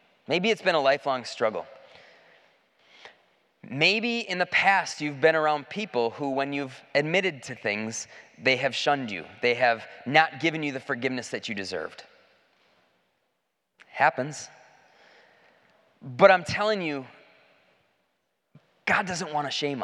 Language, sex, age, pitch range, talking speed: English, male, 20-39, 140-205 Hz, 135 wpm